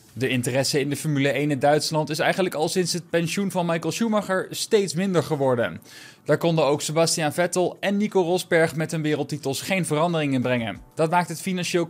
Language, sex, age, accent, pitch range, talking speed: Dutch, male, 20-39, Dutch, 140-180 Hz, 195 wpm